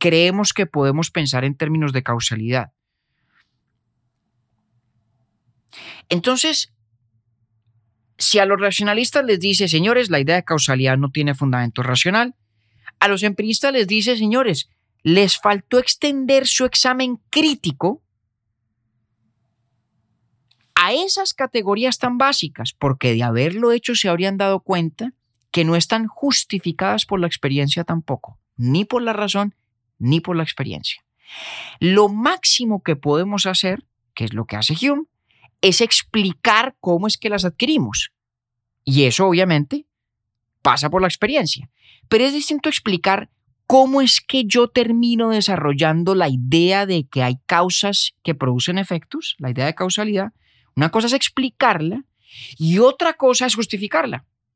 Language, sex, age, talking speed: Spanish, male, 30-49, 135 wpm